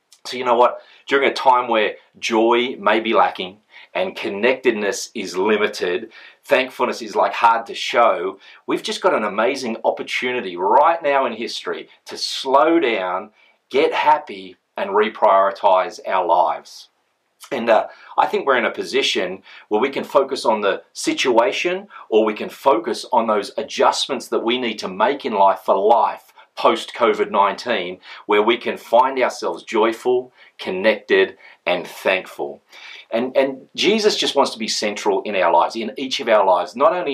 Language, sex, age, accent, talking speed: English, male, 40-59, Australian, 165 wpm